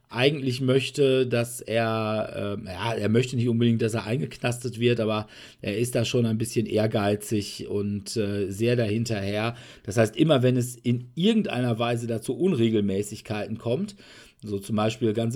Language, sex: German, male